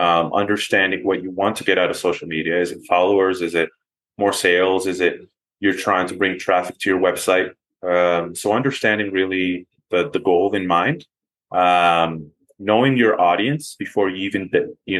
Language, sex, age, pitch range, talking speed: English, male, 20-39, 90-105 Hz, 175 wpm